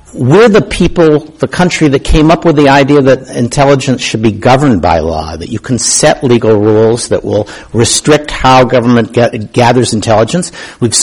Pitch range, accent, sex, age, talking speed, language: 115-150 Hz, American, male, 60-79, 175 wpm, English